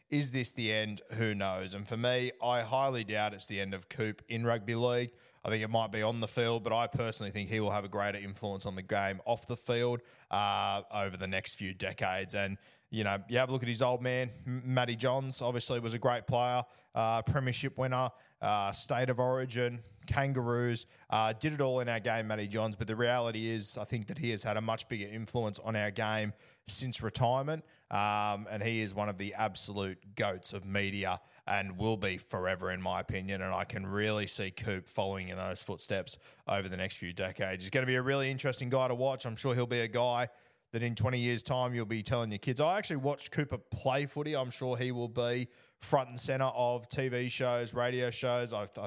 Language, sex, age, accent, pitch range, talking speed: English, male, 20-39, Australian, 105-125 Hz, 225 wpm